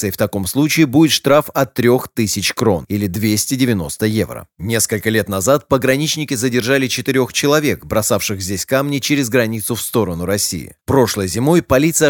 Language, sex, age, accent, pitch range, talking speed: Russian, male, 30-49, native, 110-140 Hz, 150 wpm